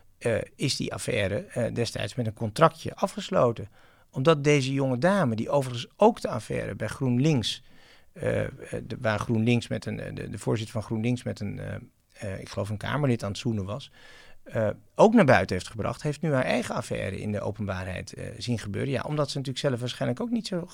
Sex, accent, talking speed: male, Dutch, 205 wpm